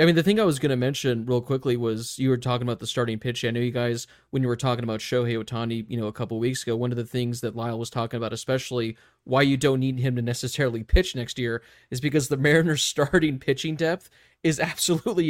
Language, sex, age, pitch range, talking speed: English, male, 20-39, 120-140 Hz, 255 wpm